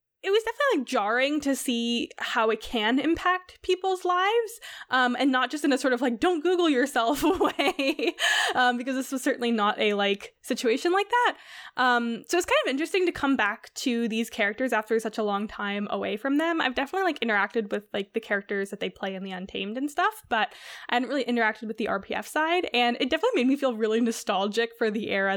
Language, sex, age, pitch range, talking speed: English, female, 10-29, 220-275 Hz, 220 wpm